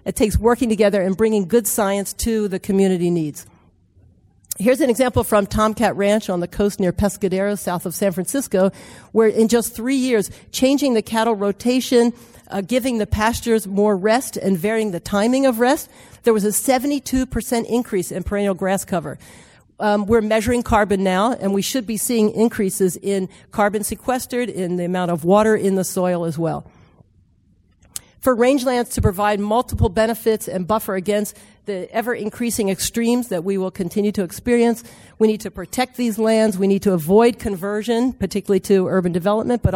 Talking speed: 175 wpm